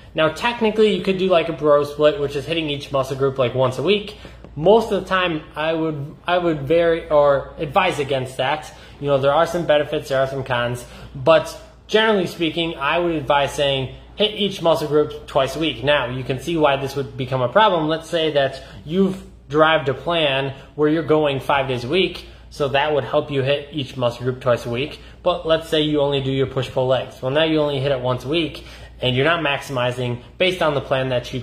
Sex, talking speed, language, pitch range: male, 230 wpm, English, 135-160 Hz